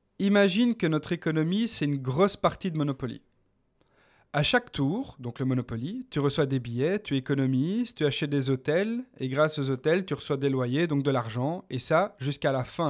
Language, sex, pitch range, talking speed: French, male, 135-180 Hz, 195 wpm